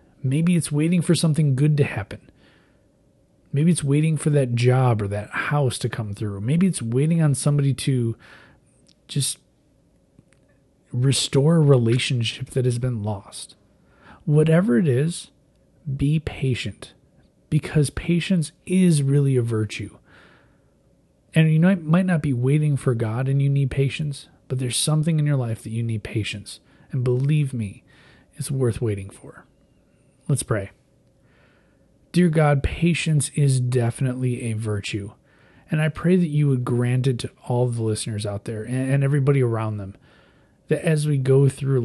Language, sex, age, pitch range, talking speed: English, male, 30-49, 115-145 Hz, 155 wpm